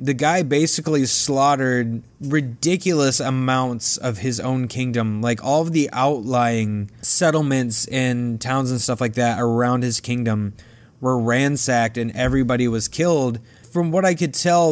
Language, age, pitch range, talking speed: English, 20-39, 120-145 Hz, 145 wpm